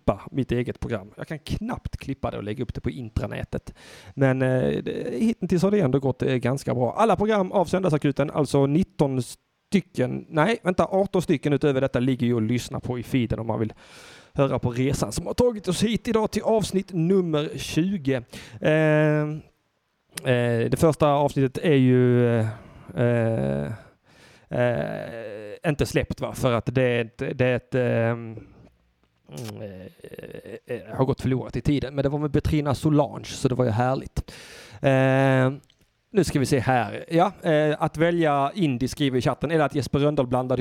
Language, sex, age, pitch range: Swedish, male, 30-49, 120-150 Hz